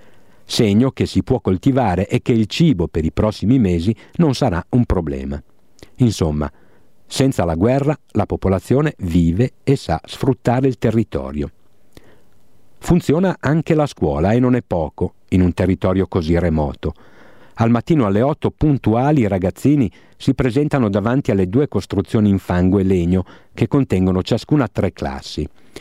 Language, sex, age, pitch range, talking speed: Italian, male, 50-69, 90-125 Hz, 150 wpm